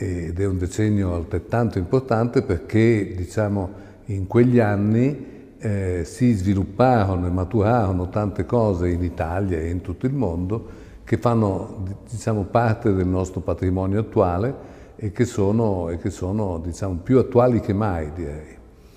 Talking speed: 140 wpm